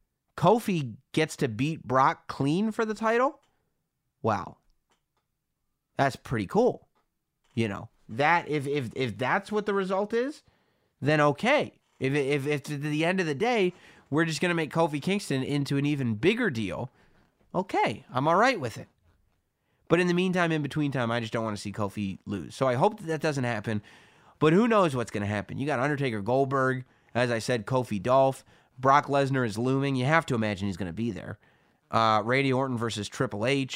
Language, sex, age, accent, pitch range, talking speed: English, male, 30-49, American, 115-150 Hz, 195 wpm